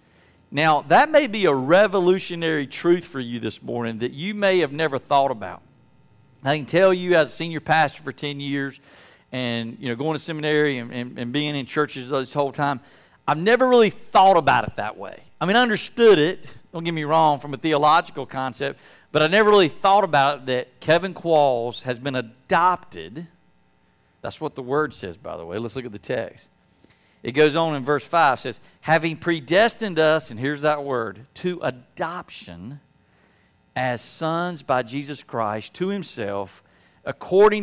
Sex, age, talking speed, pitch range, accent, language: male, 50-69, 185 wpm, 115-160 Hz, American, English